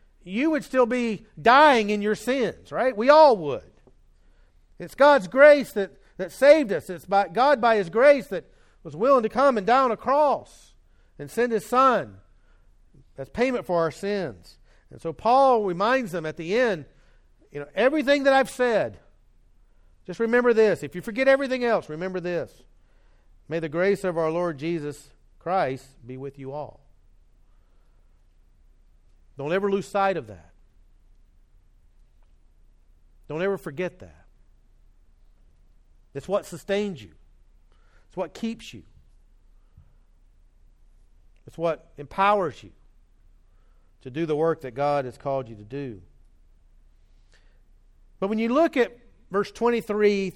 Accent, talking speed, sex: American, 145 wpm, male